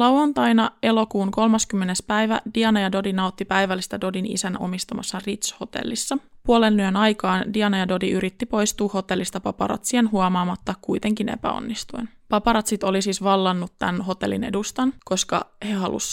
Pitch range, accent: 190-225 Hz, native